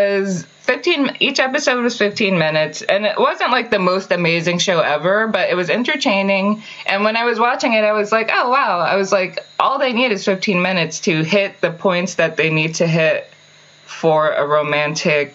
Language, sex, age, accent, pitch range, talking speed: English, female, 20-39, American, 150-205 Hz, 200 wpm